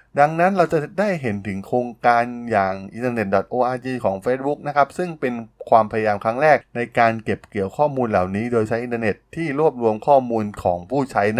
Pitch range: 100-125 Hz